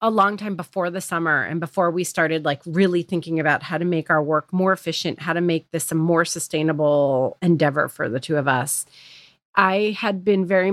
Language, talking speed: English, 215 wpm